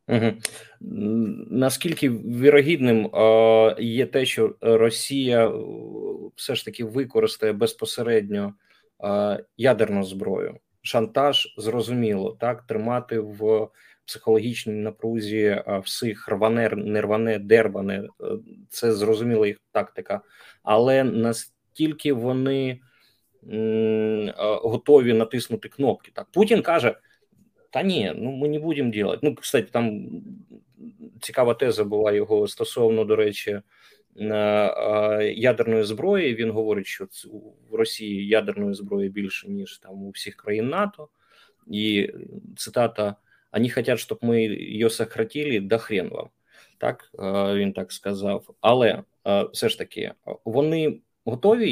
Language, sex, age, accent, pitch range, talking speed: Ukrainian, male, 30-49, native, 105-145 Hz, 110 wpm